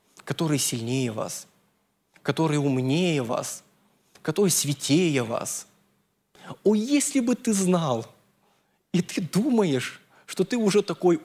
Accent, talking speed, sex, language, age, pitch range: native, 110 wpm, male, Russian, 20-39, 130-180 Hz